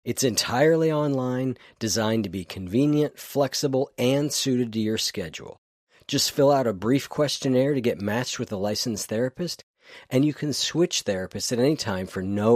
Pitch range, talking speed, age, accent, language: 95-130 Hz, 170 wpm, 50-69, American, English